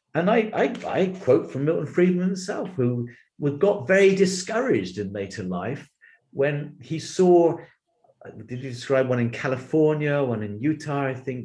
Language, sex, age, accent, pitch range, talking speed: English, male, 40-59, British, 120-170 Hz, 155 wpm